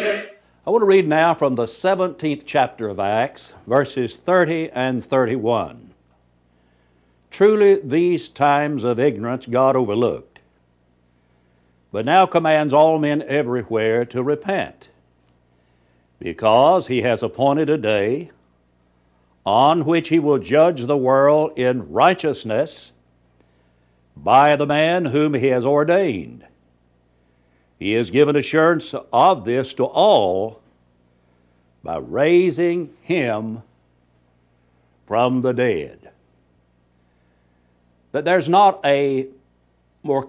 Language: English